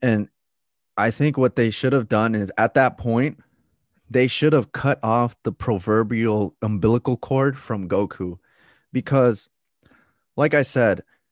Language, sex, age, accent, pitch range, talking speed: English, male, 30-49, American, 105-135 Hz, 145 wpm